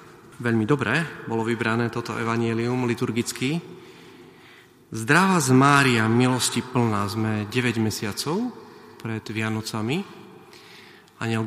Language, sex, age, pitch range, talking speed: Slovak, male, 40-59, 110-135 Hz, 95 wpm